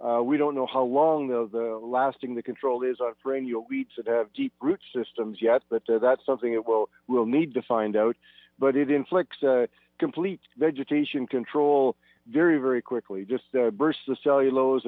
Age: 50-69